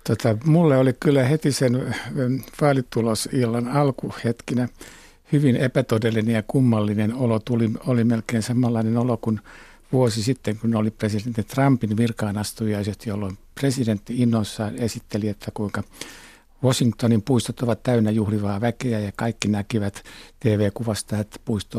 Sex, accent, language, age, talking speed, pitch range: male, native, Finnish, 60-79, 120 wpm, 110-135 Hz